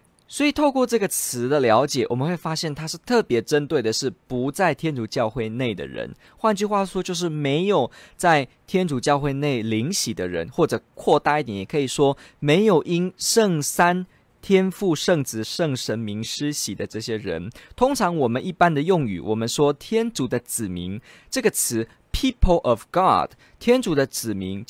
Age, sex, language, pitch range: 20-39, male, Chinese, 120-185 Hz